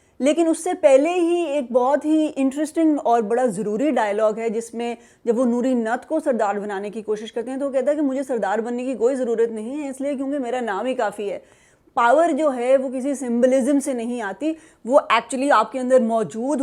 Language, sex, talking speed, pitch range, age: Urdu, female, 225 wpm, 220-275 Hz, 30-49